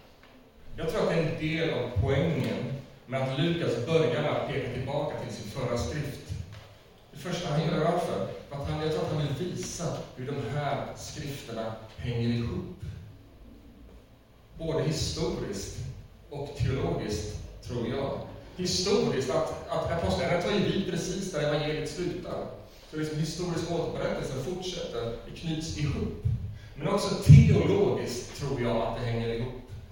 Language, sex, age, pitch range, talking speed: Swedish, male, 30-49, 115-160 Hz, 145 wpm